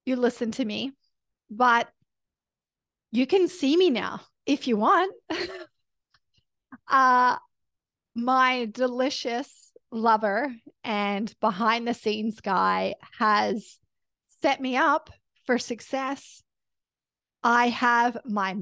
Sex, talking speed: female, 100 wpm